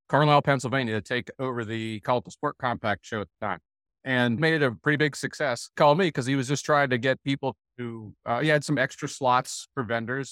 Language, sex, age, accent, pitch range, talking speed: English, male, 30-49, American, 120-150 Hz, 235 wpm